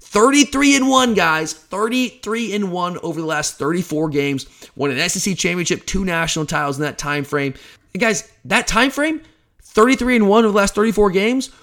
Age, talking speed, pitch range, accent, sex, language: 30-49, 185 wpm, 150-210 Hz, American, male, English